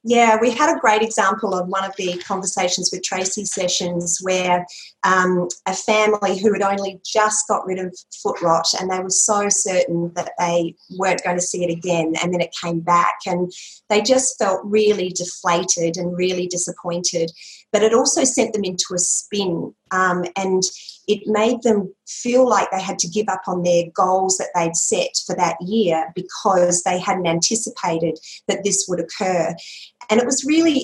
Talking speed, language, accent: 185 wpm, English, Australian